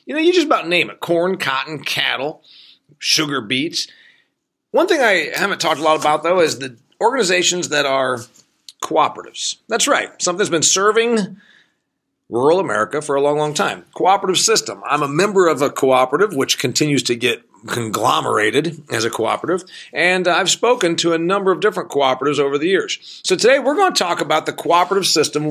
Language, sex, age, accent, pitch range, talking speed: English, male, 40-59, American, 150-215 Hz, 185 wpm